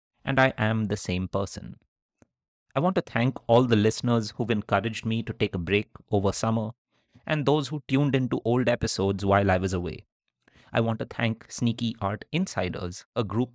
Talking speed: 185 wpm